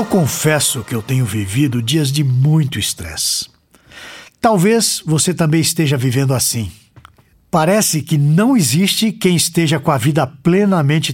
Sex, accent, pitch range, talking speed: male, Brazilian, 130-190 Hz, 140 wpm